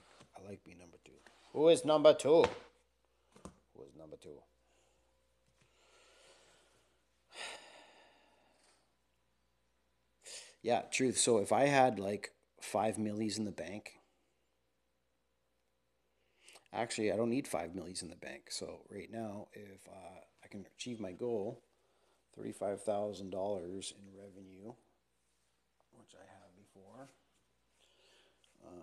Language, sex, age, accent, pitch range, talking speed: English, male, 40-59, American, 80-110 Hz, 110 wpm